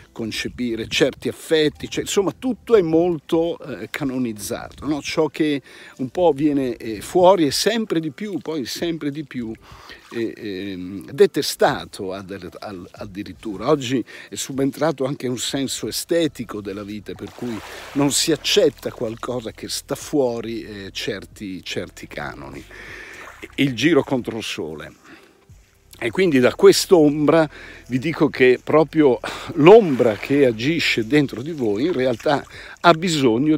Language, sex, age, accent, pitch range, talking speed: Italian, male, 60-79, native, 115-155 Hz, 120 wpm